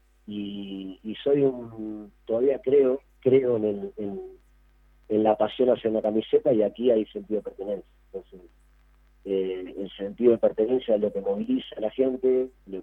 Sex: male